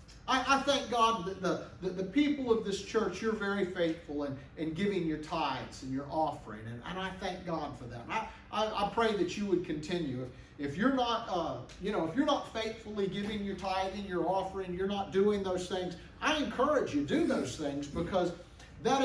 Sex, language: male, English